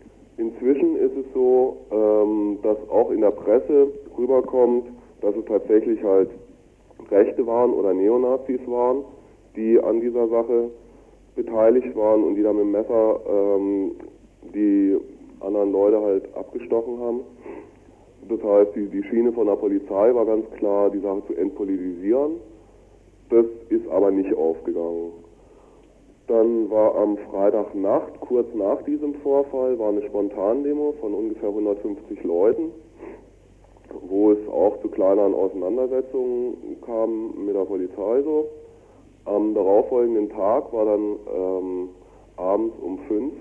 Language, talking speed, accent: German, 125 wpm, German